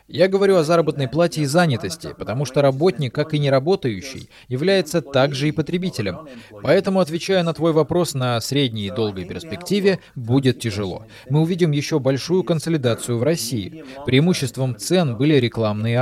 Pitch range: 120-165 Hz